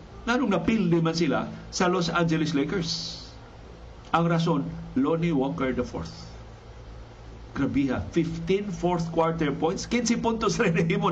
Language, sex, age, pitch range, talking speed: Filipino, male, 50-69, 155-185 Hz, 120 wpm